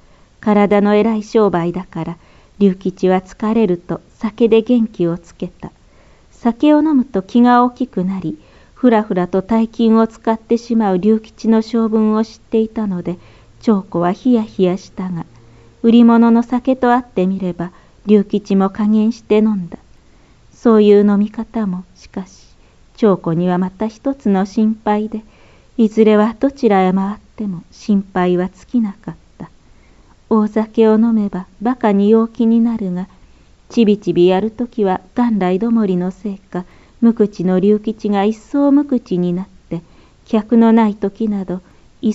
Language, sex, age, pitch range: Japanese, female, 40-59, 185-225 Hz